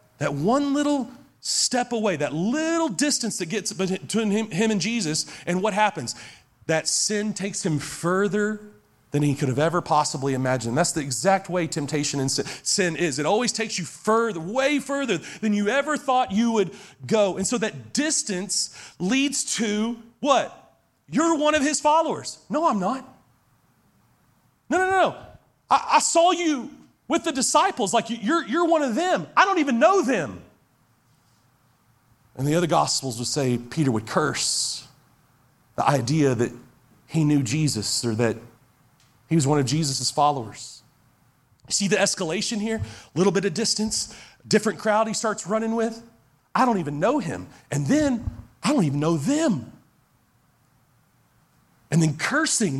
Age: 40-59